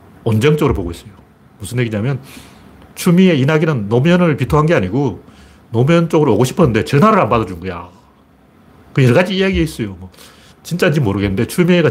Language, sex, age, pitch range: Korean, male, 40-59, 105-170 Hz